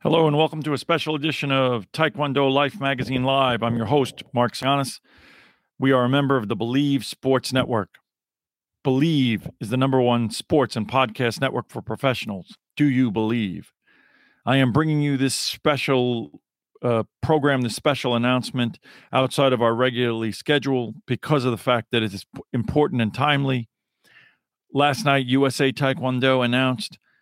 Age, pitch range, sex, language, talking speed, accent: 50-69, 120-140 Hz, male, English, 155 wpm, American